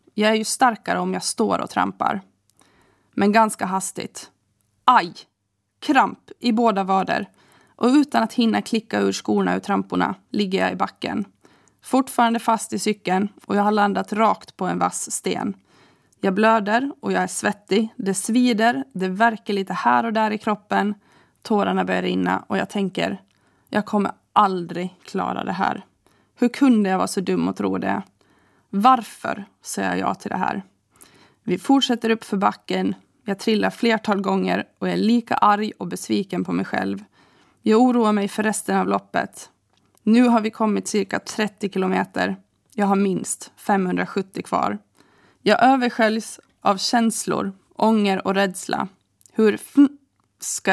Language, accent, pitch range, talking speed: Swedish, native, 185-225 Hz, 155 wpm